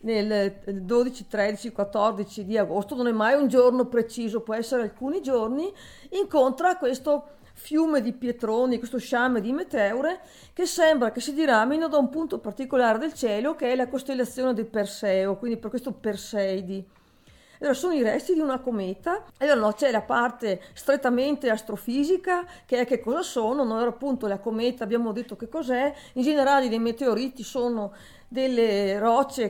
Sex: female